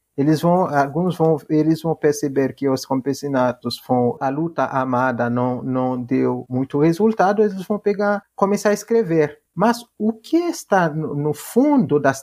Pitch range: 140-205 Hz